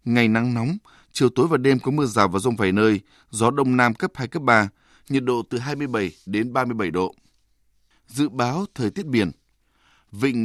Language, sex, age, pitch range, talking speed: Vietnamese, male, 20-39, 110-145 Hz, 195 wpm